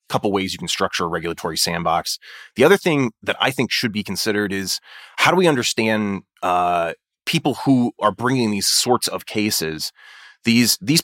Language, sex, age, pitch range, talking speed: English, male, 30-49, 90-115 Hz, 180 wpm